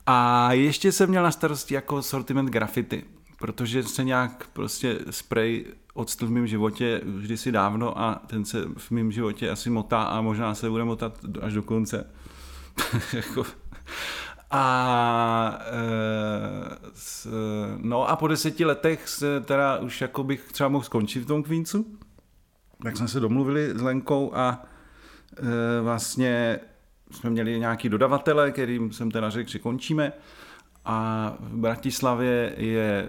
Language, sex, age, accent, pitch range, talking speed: Czech, male, 40-59, native, 110-130 Hz, 145 wpm